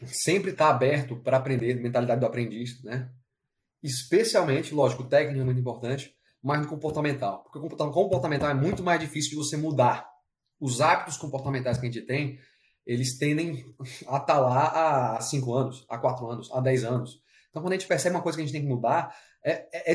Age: 30-49